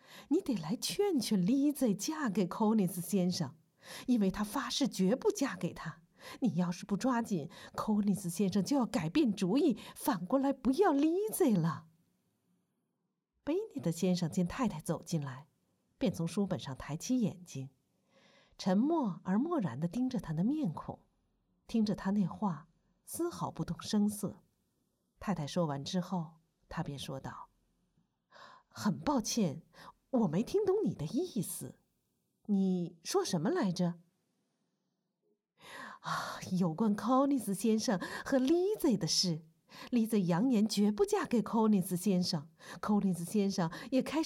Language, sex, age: Chinese, female, 50-69